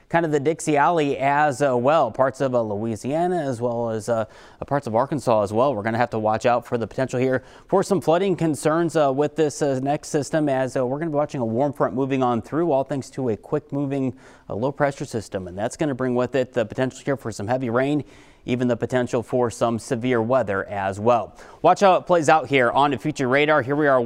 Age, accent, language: 30-49, American, English